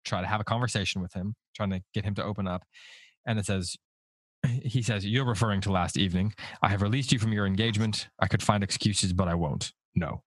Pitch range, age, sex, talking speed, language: 95-115 Hz, 20-39, male, 230 wpm, English